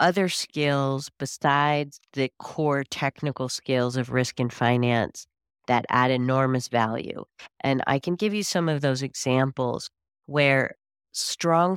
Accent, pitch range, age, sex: American, 130-170 Hz, 40-59, female